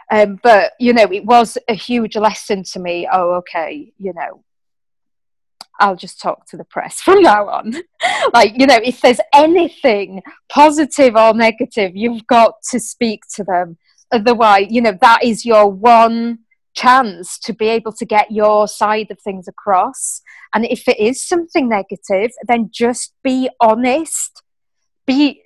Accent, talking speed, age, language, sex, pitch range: British, 160 wpm, 30-49, English, female, 195-250 Hz